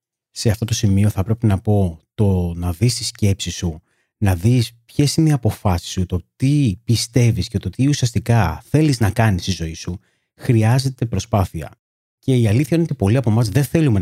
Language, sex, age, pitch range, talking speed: Greek, male, 30-49, 95-130 Hz, 195 wpm